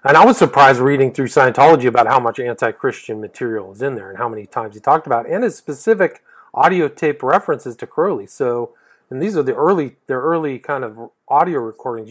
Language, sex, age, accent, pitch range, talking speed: English, male, 40-59, American, 115-140 Hz, 215 wpm